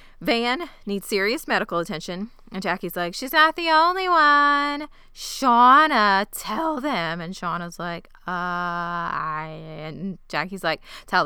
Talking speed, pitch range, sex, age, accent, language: 135 wpm, 160-205 Hz, female, 20-39, American, English